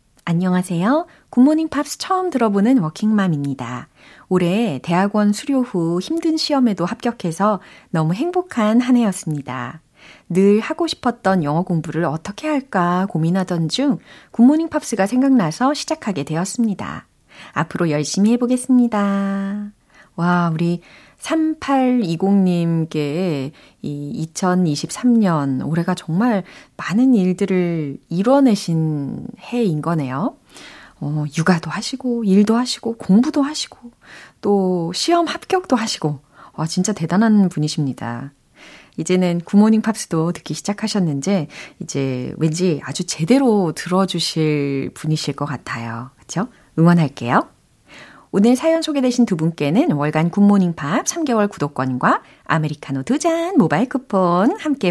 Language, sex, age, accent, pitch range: Korean, female, 30-49, native, 160-245 Hz